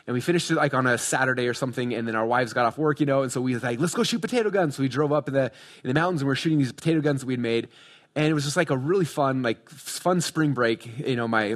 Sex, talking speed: male, 330 wpm